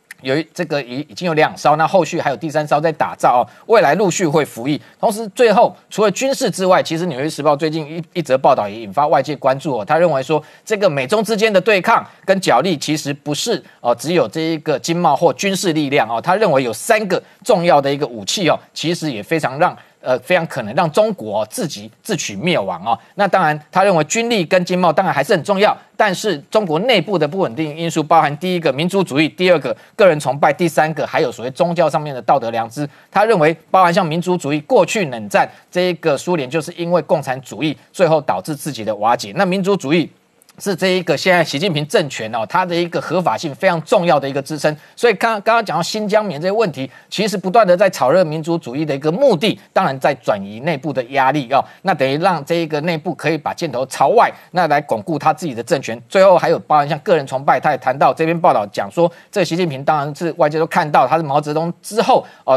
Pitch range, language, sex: 150-185 Hz, Chinese, male